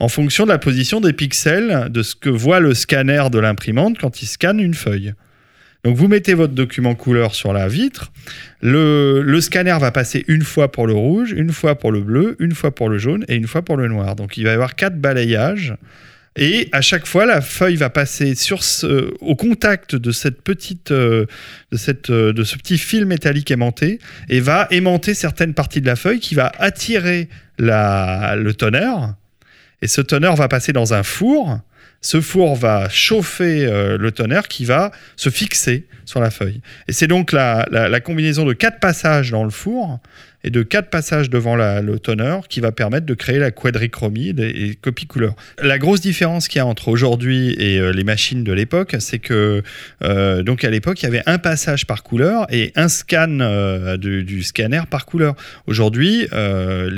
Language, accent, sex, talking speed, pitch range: French, French, male, 200 wpm, 110-160 Hz